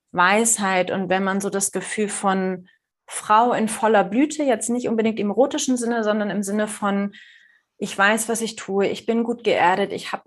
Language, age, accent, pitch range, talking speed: German, 30-49, German, 190-225 Hz, 195 wpm